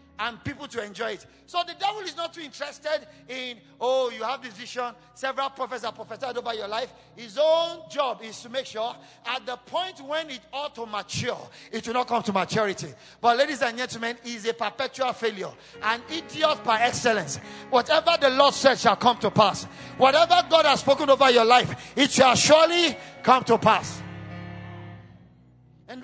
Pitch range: 235-315 Hz